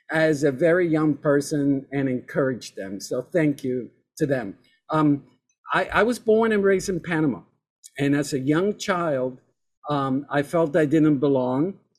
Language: English